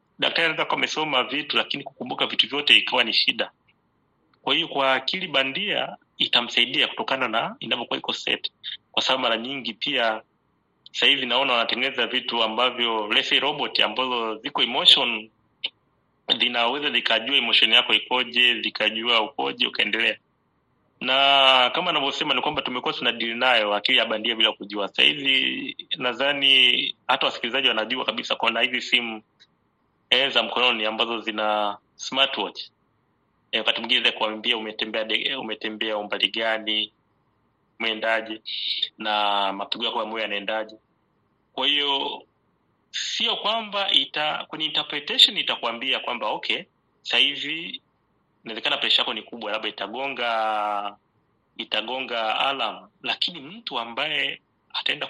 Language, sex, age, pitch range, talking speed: Swahili, male, 30-49, 110-135 Hz, 120 wpm